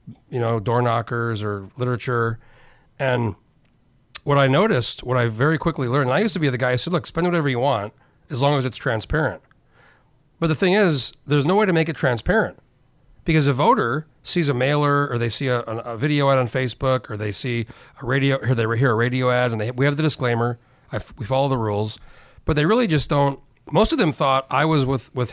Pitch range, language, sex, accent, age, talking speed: 120-145 Hz, English, male, American, 40-59, 225 wpm